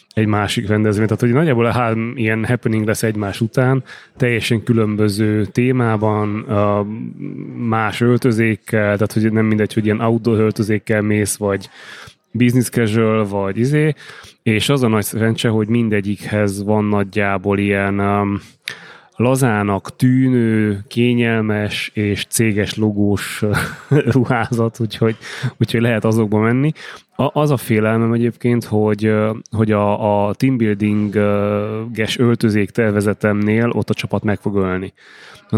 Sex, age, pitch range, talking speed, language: male, 20-39, 105-115 Hz, 120 wpm, Hungarian